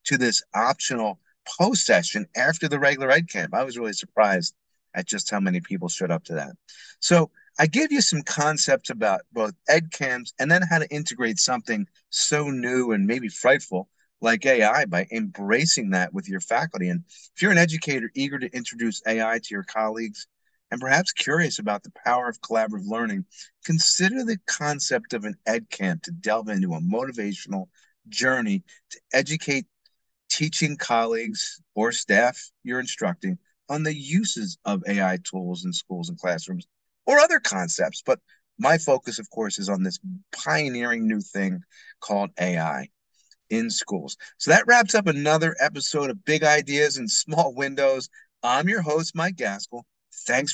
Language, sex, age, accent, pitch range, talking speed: English, male, 40-59, American, 115-180 Hz, 160 wpm